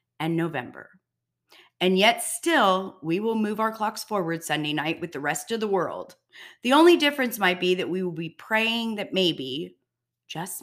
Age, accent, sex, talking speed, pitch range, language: 30-49, American, female, 180 wpm, 160-205 Hz, English